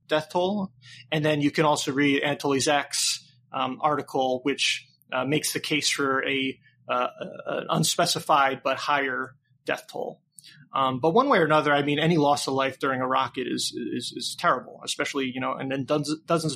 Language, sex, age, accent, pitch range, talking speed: English, male, 30-49, American, 140-165 Hz, 190 wpm